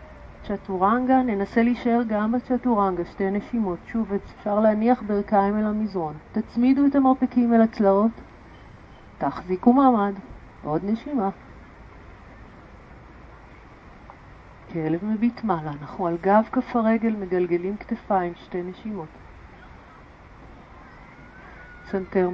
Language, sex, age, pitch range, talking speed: Hebrew, female, 40-59, 190-230 Hz, 95 wpm